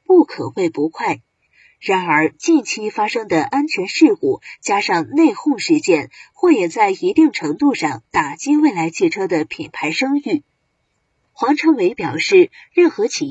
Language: Chinese